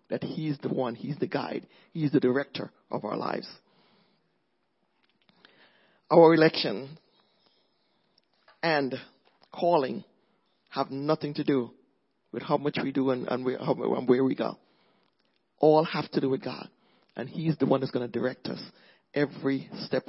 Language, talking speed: English, 145 wpm